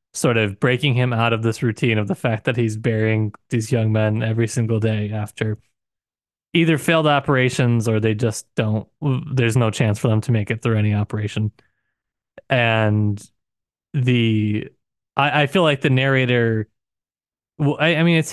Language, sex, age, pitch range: English, male, 20-39, 110-130 Hz